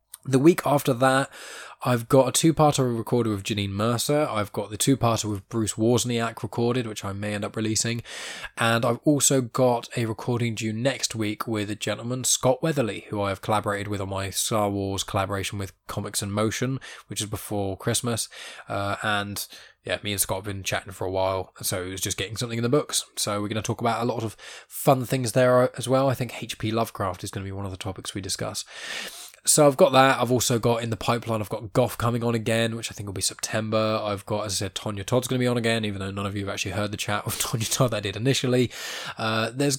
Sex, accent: male, British